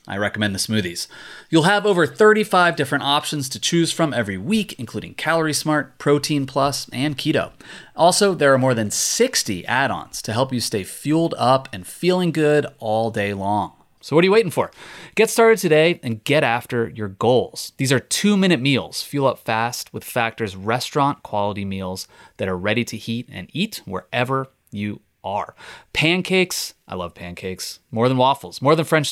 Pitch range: 115-160 Hz